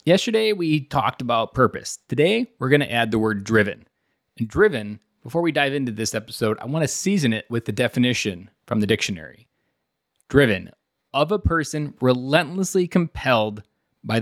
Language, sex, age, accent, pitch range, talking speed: English, male, 30-49, American, 115-155 Hz, 165 wpm